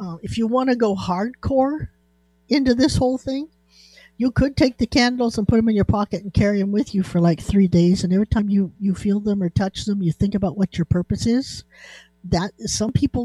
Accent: American